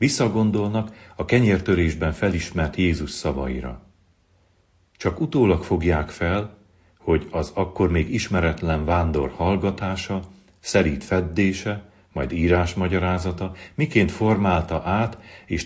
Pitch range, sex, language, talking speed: 85-105 Hz, male, Hungarian, 95 wpm